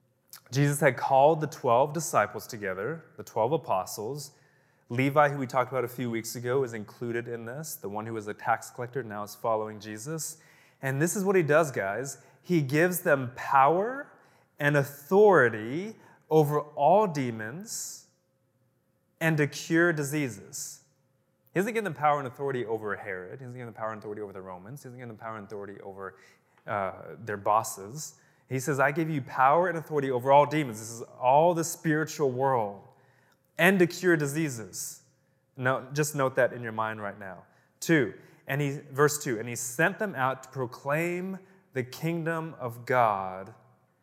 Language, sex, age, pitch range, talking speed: English, male, 20-39, 120-155 Hz, 175 wpm